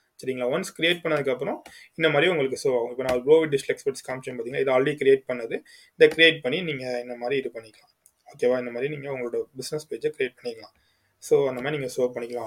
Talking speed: 225 wpm